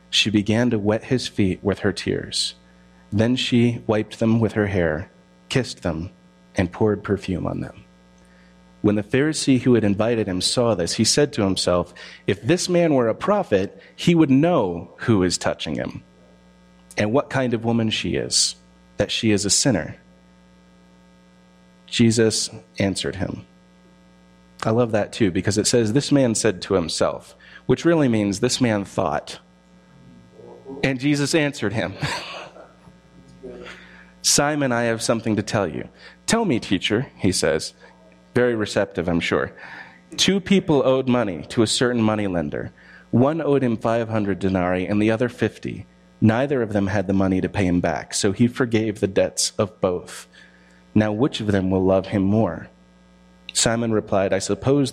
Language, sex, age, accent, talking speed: English, male, 30-49, American, 165 wpm